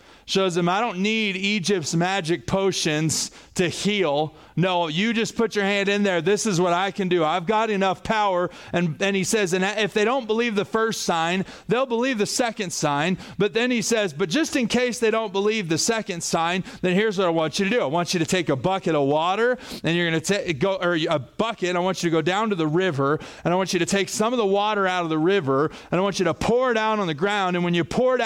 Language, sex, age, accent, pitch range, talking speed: English, male, 30-49, American, 170-210 Hz, 260 wpm